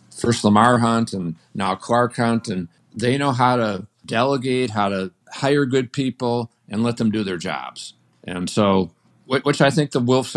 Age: 50-69